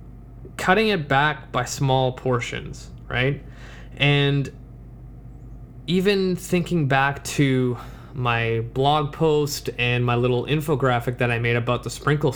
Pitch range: 125-140 Hz